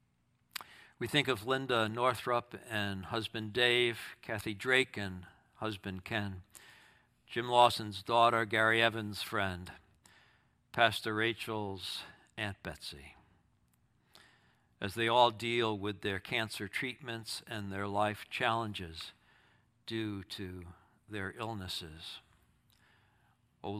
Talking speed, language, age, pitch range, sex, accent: 100 wpm, English, 60-79, 95-115 Hz, male, American